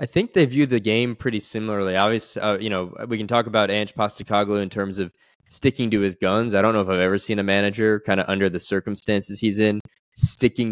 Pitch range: 100-115 Hz